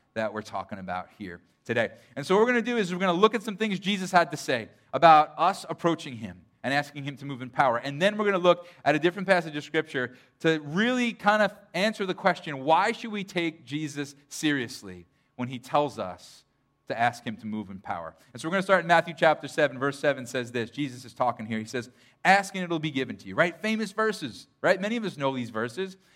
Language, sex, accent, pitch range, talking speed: English, male, American, 135-180 Hz, 250 wpm